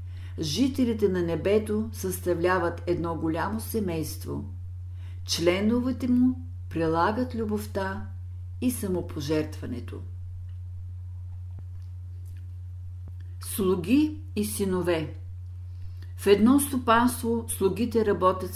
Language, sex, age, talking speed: Bulgarian, female, 50-69, 70 wpm